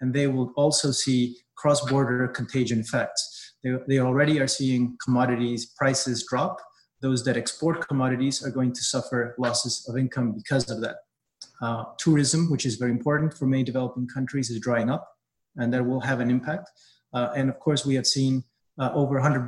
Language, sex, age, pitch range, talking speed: English, male, 30-49, 120-140 Hz, 180 wpm